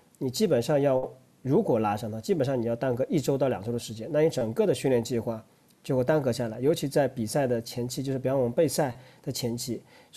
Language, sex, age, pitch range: Chinese, male, 40-59, 125-175 Hz